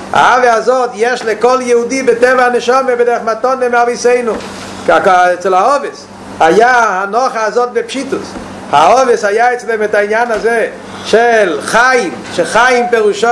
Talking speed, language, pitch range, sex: 110 wpm, Hebrew, 215-245 Hz, male